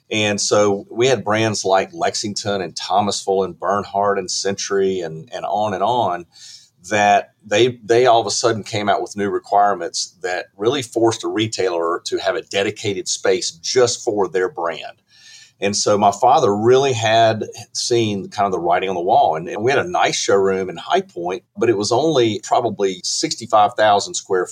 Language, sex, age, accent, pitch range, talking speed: English, male, 40-59, American, 95-125 Hz, 185 wpm